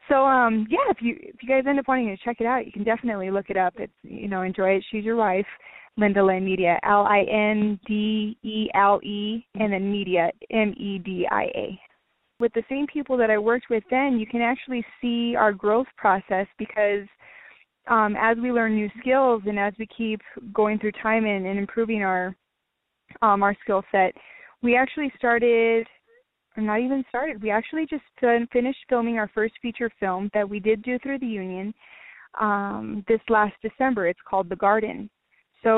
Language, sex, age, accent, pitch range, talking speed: English, female, 20-39, American, 205-235 Hz, 195 wpm